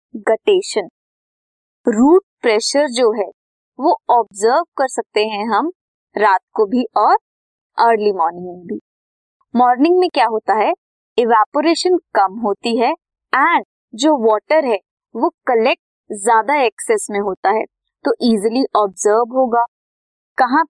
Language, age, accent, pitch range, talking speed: Hindi, 20-39, native, 220-320 Hz, 125 wpm